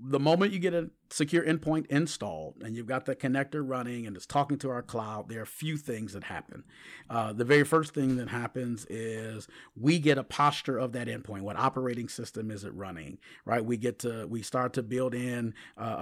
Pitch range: 120-140 Hz